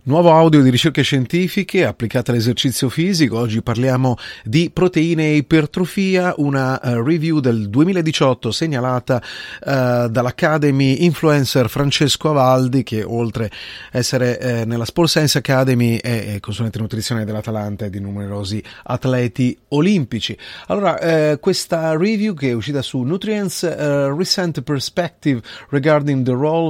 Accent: native